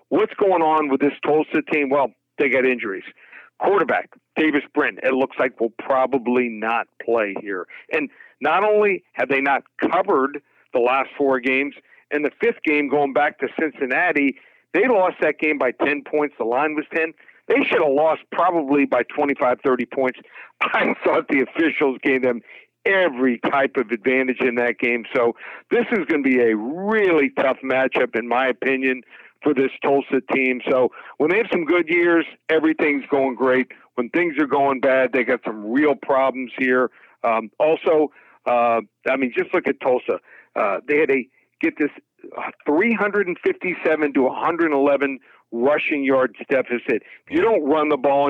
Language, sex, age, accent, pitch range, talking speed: English, male, 60-79, American, 130-155 Hz, 175 wpm